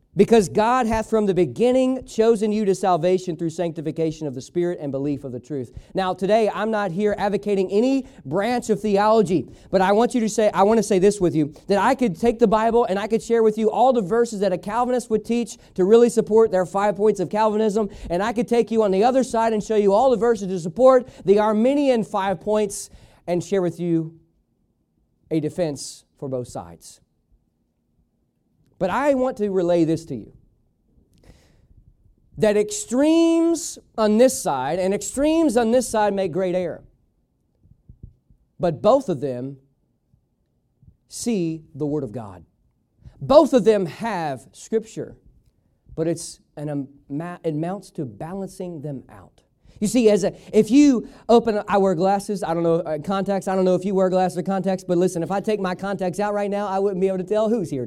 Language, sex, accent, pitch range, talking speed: English, male, American, 165-225 Hz, 190 wpm